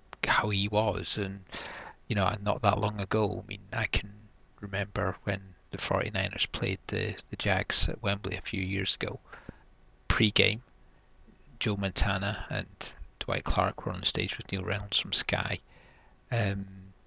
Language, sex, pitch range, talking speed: English, male, 95-110 Hz, 160 wpm